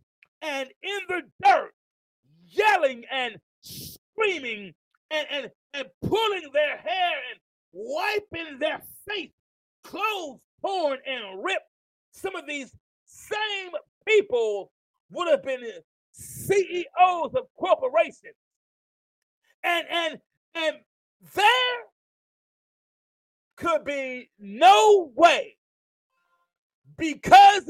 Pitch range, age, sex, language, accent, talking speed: 275-405 Hz, 40-59, male, English, American, 90 wpm